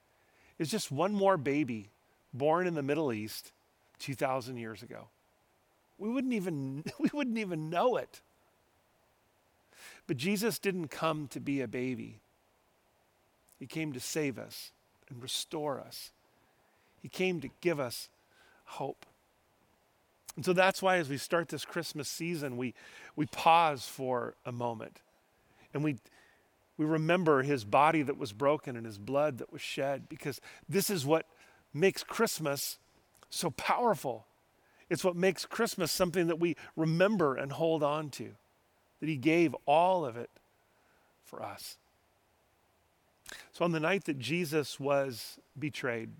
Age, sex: 40-59, male